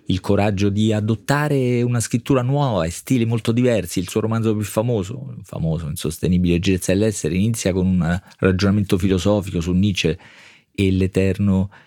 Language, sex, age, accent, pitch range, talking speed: Italian, male, 40-59, native, 90-110 Hz, 140 wpm